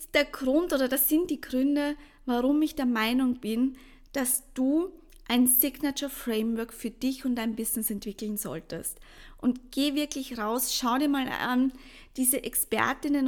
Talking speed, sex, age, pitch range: 155 wpm, female, 20-39, 225-275 Hz